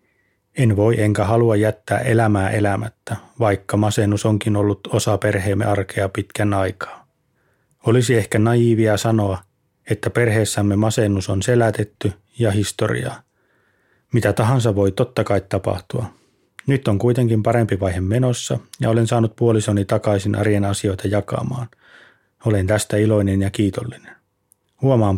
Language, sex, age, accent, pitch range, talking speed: Finnish, male, 30-49, native, 100-115 Hz, 125 wpm